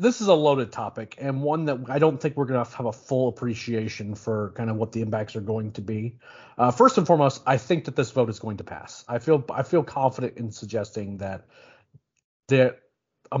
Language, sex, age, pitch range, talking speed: English, male, 40-59, 115-140 Hz, 230 wpm